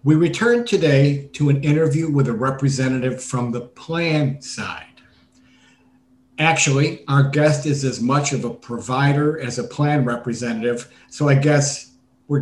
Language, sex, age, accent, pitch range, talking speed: English, male, 50-69, American, 120-145 Hz, 145 wpm